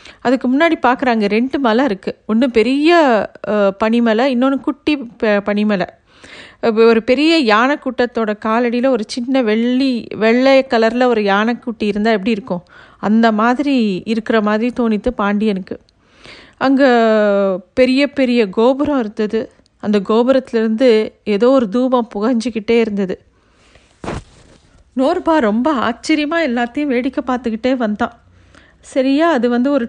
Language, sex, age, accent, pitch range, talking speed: Tamil, female, 40-59, native, 225-265 Hz, 115 wpm